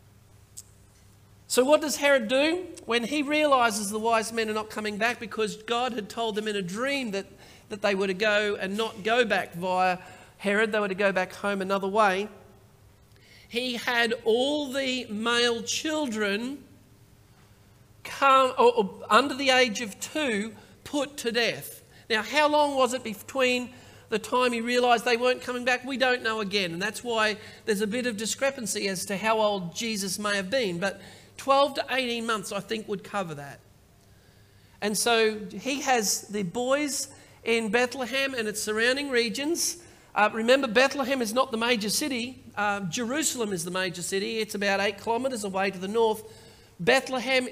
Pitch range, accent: 200-250 Hz, Australian